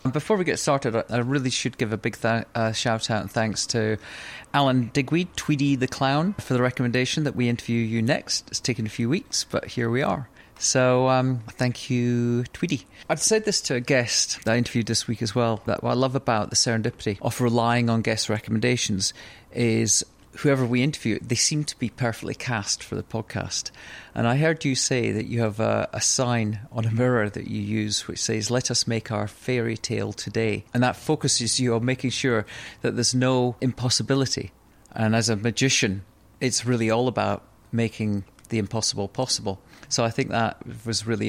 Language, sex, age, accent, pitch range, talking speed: English, male, 40-59, British, 110-130 Hz, 200 wpm